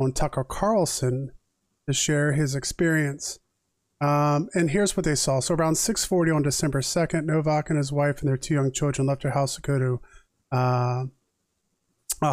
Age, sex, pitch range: 30-49, male, 130-155 Hz